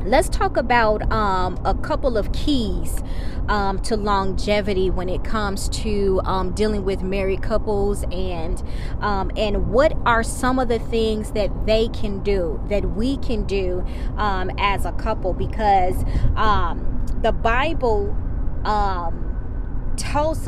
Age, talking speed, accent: 20-39, 140 wpm, American